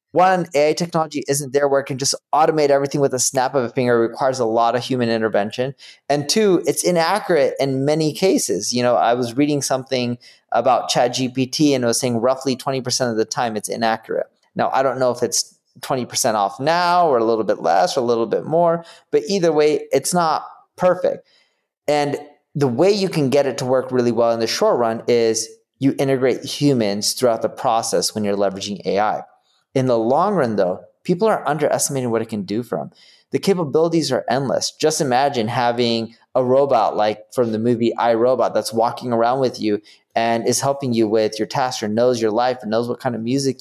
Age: 30-49